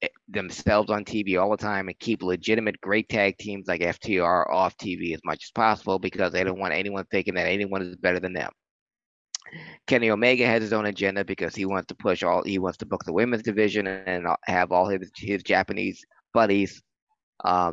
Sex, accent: male, American